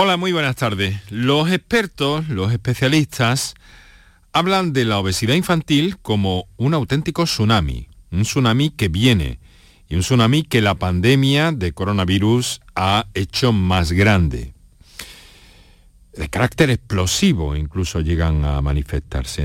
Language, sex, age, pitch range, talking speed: Spanish, male, 40-59, 95-140 Hz, 125 wpm